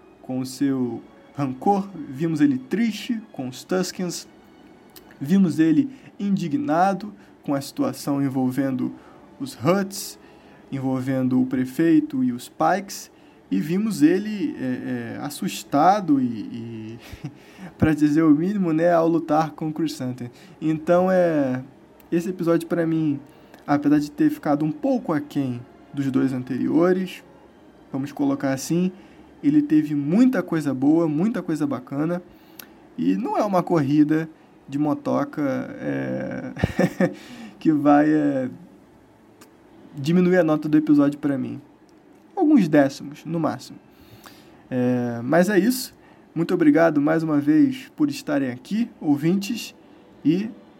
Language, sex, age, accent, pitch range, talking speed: Portuguese, male, 20-39, Brazilian, 145-215 Hz, 120 wpm